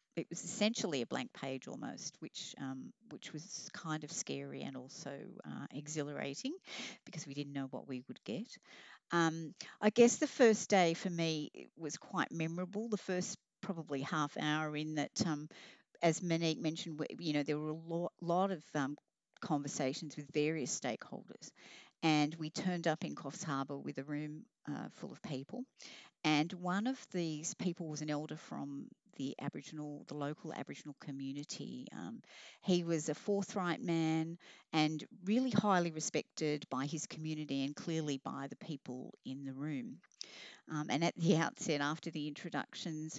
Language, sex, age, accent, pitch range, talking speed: English, female, 50-69, Australian, 145-185 Hz, 165 wpm